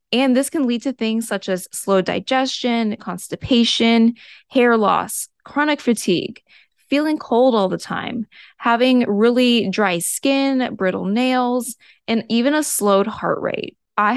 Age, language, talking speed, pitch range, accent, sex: 20-39, English, 140 wpm, 200-255 Hz, American, female